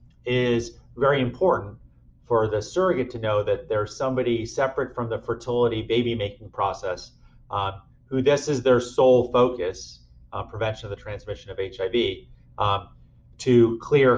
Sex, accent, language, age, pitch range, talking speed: male, American, English, 30-49, 95-130 Hz, 150 wpm